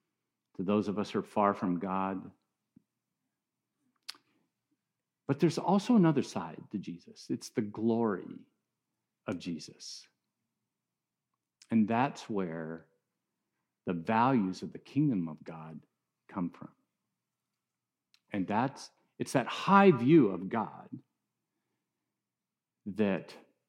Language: English